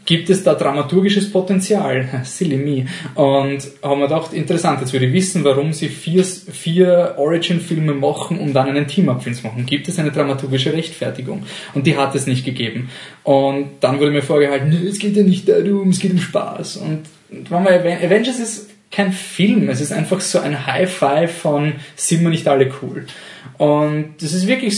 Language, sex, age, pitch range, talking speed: German, male, 20-39, 140-190 Hz, 190 wpm